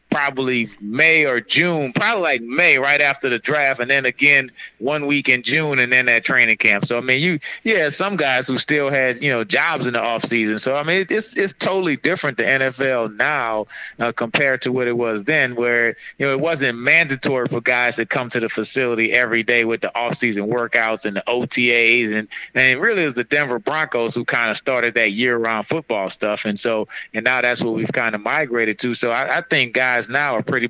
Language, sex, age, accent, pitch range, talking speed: English, male, 30-49, American, 115-145 Hz, 225 wpm